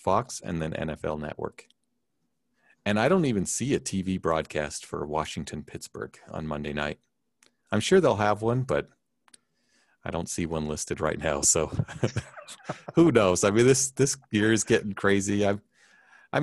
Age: 40-59